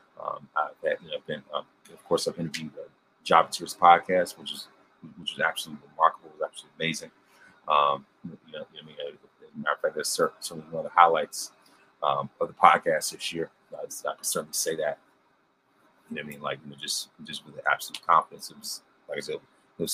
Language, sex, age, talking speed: English, male, 30-49, 230 wpm